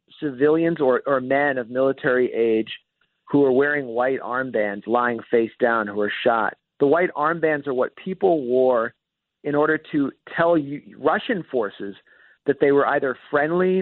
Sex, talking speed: male, 160 wpm